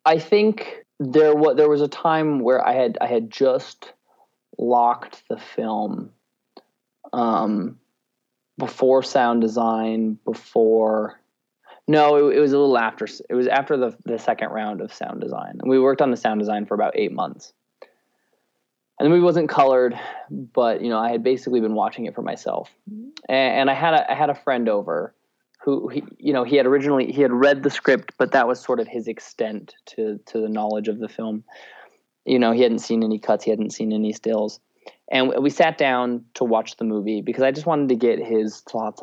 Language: English